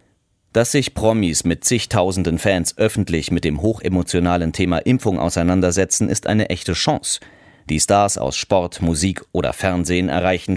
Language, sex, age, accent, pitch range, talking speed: German, male, 40-59, German, 85-105 Hz, 140 wpm